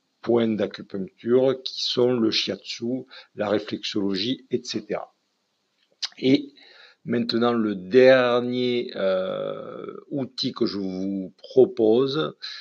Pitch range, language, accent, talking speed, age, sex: 100-125 Hz, French, French, 90 wpm, 50-69, male